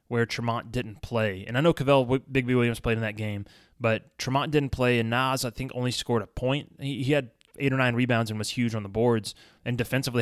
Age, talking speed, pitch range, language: 20-39, 235 wpm, 110-130 Hz, English